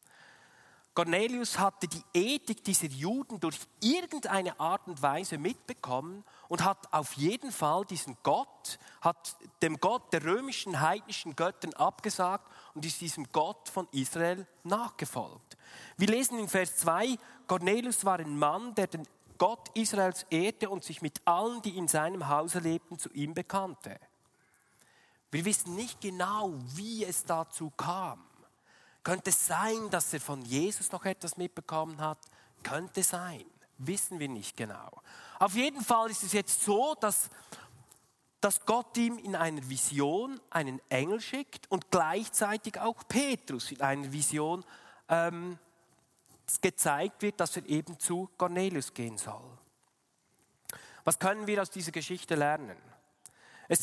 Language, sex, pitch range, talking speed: German, male, 155-205 Hz, 140 wpm